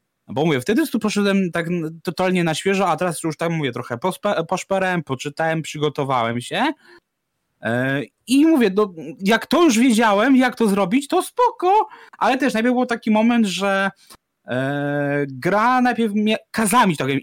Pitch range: 160-225 Hz